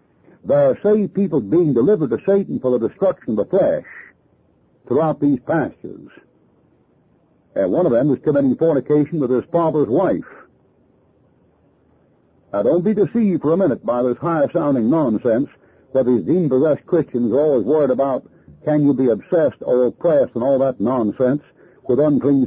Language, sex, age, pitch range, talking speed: English, male, 60-79, 120-170 Hz, 165 wpm